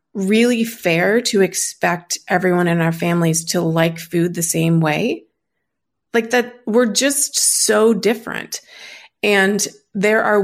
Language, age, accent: English, 30-49, American